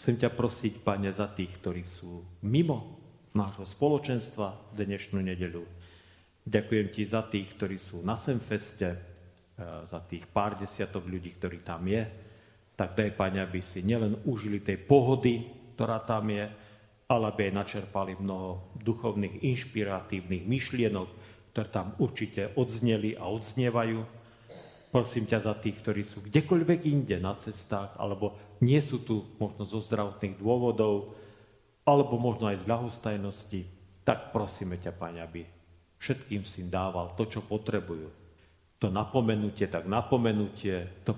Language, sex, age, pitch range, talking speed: Slovak, male, 40-59, 95-115 Hz, 140 wpm